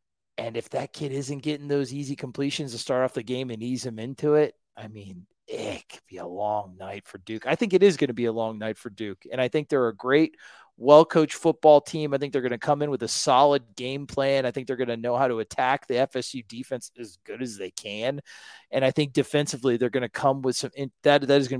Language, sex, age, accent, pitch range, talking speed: English, male, 30-49, American, 120-145 Hz, 260 wpm